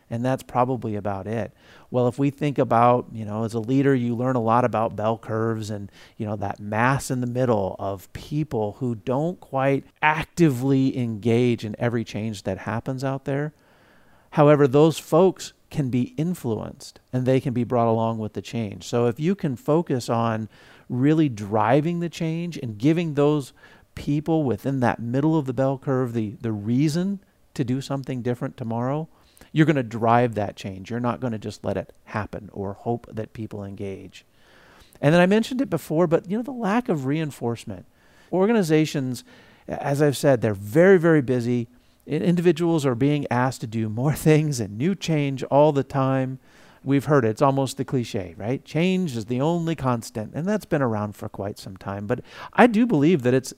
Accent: American